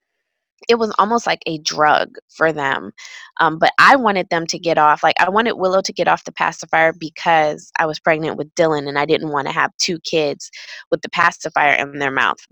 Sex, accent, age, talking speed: female, American, 20-39, 215 wpm